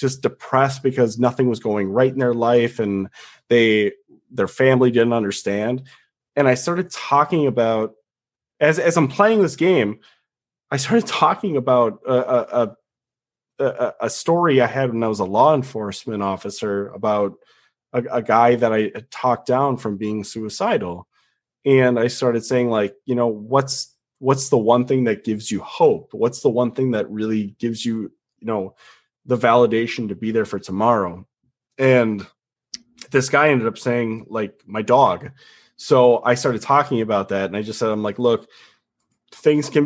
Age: 30-49